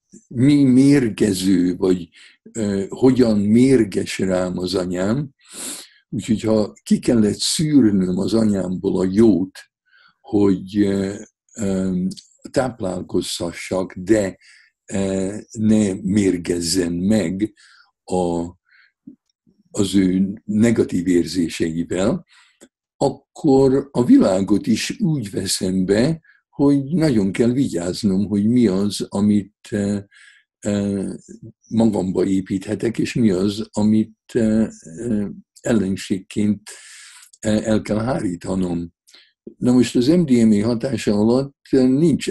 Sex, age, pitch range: male, 60-79, 95-115 Hz